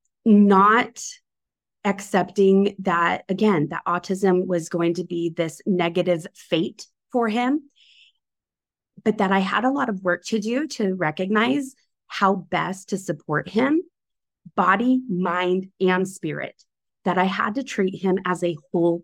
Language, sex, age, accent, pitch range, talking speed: English, female, 20-39, American, 175-210 Hz, 140 wpm